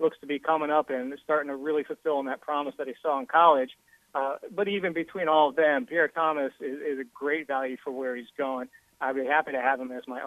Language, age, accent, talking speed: English, 40-59, American, 250 wpm